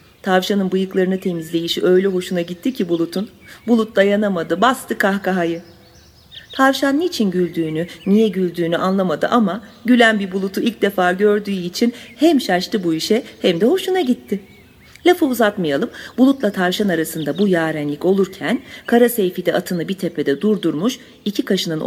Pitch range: 170-215 Hz